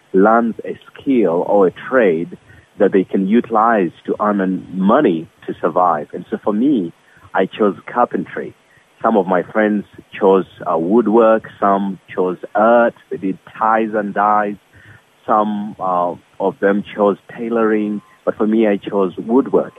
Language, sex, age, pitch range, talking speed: English, male, 30-49, 95-110 Hz, 150 wpm